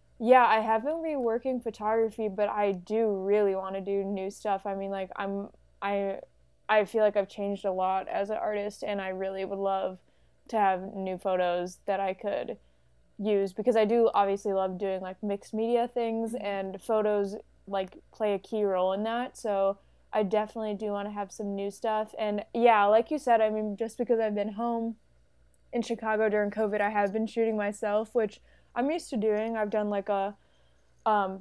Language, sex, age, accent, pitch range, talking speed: English, female, 20-39, American, 195-225 Hz, 195 wpm